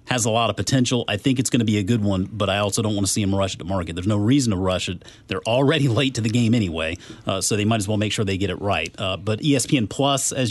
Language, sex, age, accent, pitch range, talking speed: English, male, 40-59, American, 100-130 Hz, 320 wpm